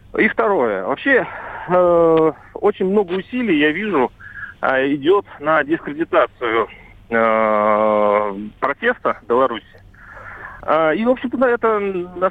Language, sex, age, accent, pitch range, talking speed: Russian, male, 40-59, native, 130-210 Hz, 105 wpm